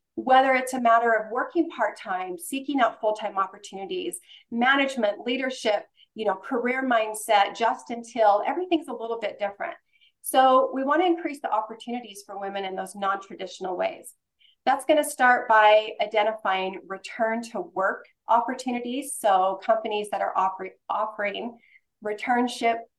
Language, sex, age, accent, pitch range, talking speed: English, female, 40-59, American, 200-245 Hz, 140 wpm